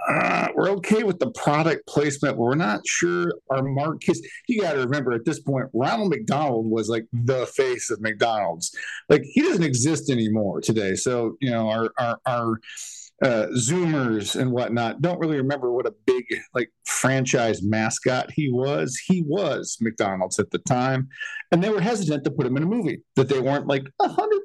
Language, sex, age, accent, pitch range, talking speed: English, male, 40-59, American, 125-195 Hz, 185 wpm